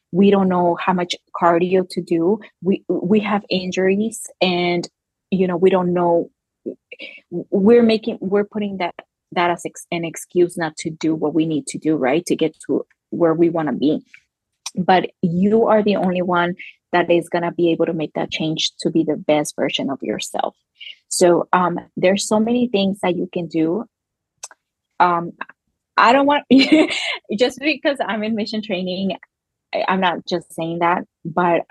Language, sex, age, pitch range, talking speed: English, female, 20-39, 170-200 Hz, 175 wpm